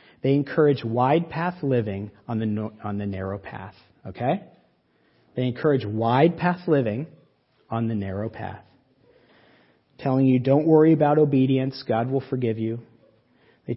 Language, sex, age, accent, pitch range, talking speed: English, male, 40-59, American, 115-135 Hz, 140 wpm